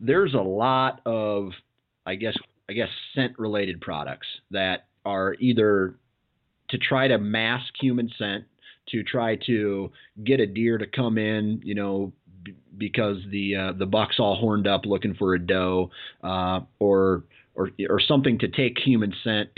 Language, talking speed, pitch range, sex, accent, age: English, 160 wpm, 95-120 Hz, male, American, 30-49